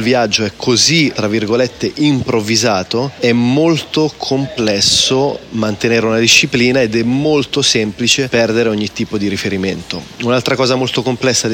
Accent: native